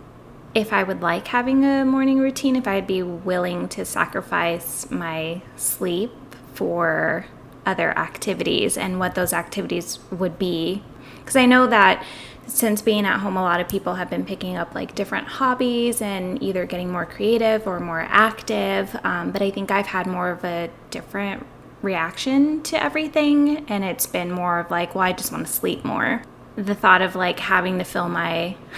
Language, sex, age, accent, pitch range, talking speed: English, female, 10-29, American, 175-215 Hz, 180 wpm